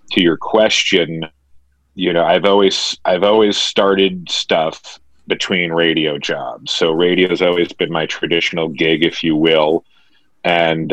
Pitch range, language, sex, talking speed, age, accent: 80-90 Hz, English, male, 145 wpm, 40-59, American